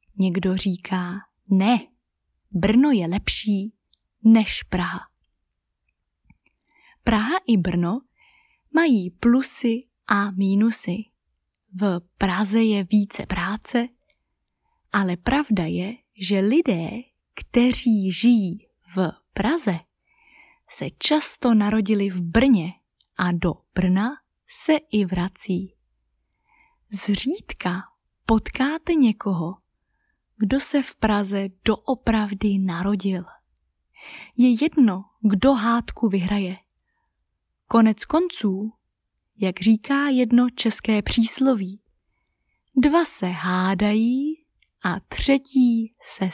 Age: 20-39